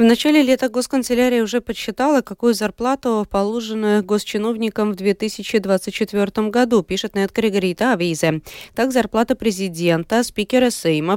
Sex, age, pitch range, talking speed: female, 20-39, 175-220 Hz, 120 wpm